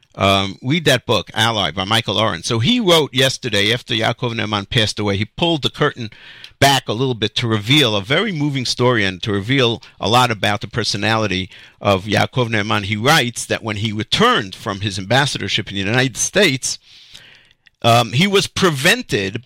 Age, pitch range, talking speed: 50-69, 105-135 Hz, 180 wpm